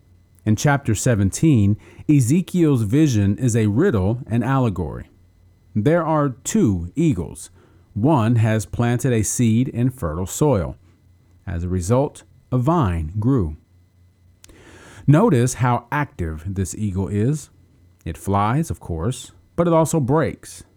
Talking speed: 120 wpm